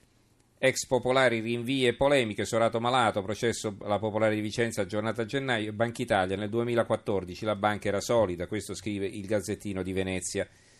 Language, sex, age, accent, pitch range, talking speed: Italian, male, 40-59, native, 105-120 Hz, 155 wpm